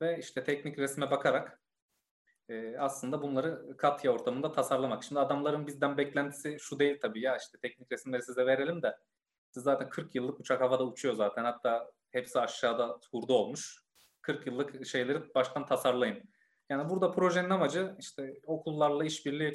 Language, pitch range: Turkish, 130-155 Hz